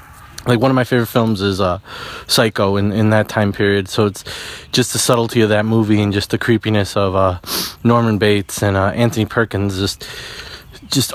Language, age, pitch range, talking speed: English, 20-39, 110-135 Hz, 195 wpm